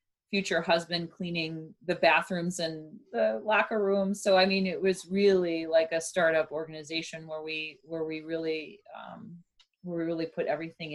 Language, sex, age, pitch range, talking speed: English, female, 30-49, 155-190 Hz, 165 wpm